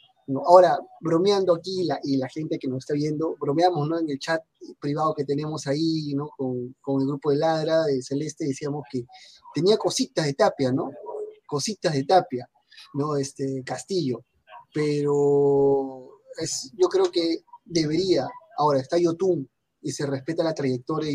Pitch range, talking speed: 140-195 Hz, 165 wpm